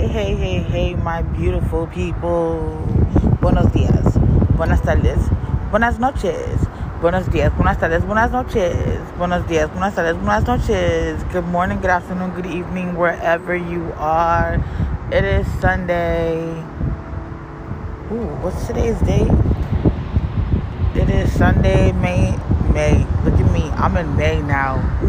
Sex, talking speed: female, 125 wpm